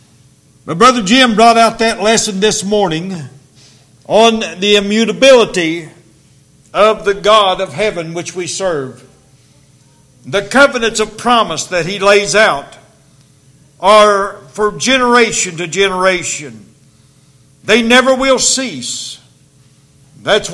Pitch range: 140-220 Hz